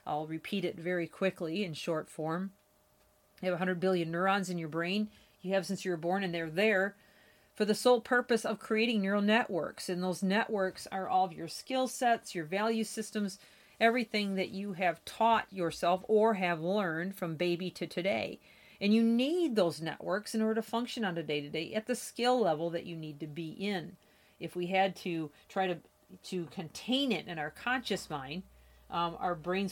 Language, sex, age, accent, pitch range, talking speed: English, female, 40-59, American, 175-215 Hz, 195 wpm